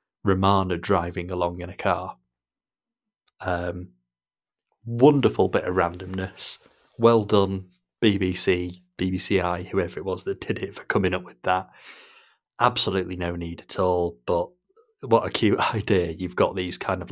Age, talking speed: 30-49, 145 wpm